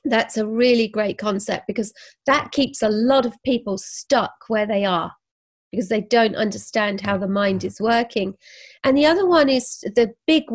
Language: English